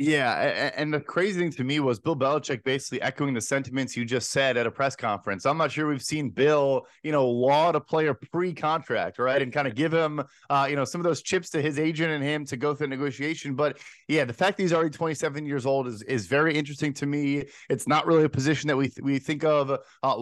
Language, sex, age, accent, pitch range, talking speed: English, male, 30-49, American, 135-160 Hz, 250 wpm